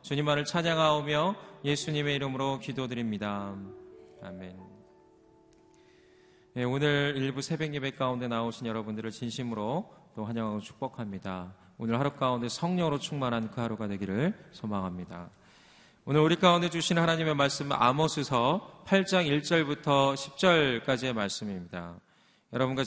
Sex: male